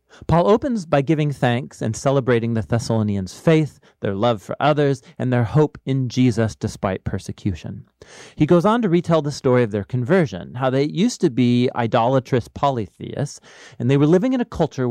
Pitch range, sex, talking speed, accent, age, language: 115-170 Hz, male, 180 wpm, American, 40-59, English